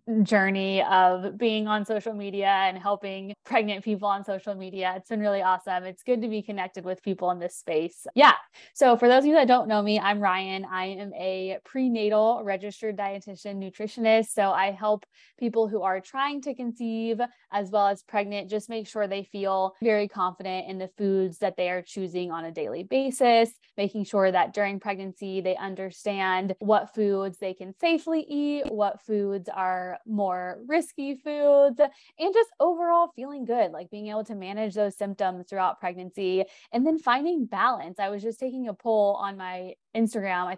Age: 20-39